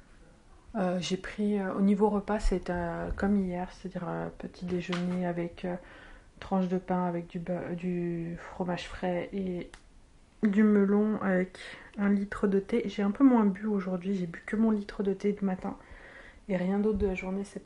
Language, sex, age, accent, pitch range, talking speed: French, female, 30-49, French, 185-210 Hz, 185 wpm